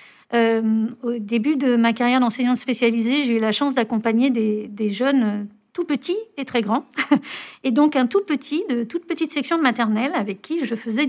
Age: 40-59